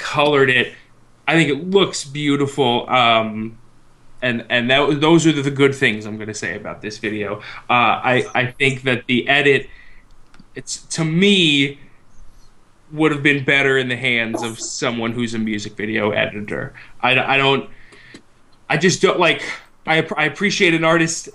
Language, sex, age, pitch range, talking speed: English, male, 20-39, 120-155 Hz, 165 wpm